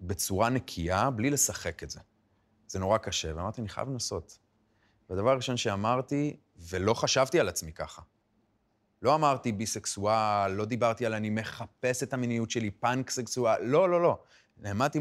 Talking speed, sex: 150 wpm, male